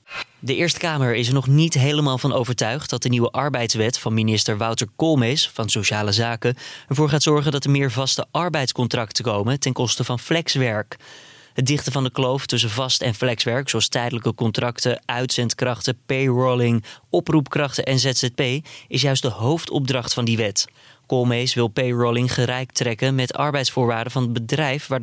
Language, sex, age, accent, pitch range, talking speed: Dutch, male, 20-39, Dutch, 120-140 Hz, 165 wpm